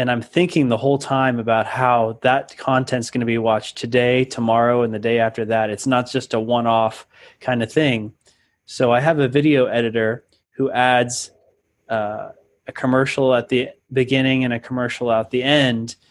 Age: 20-39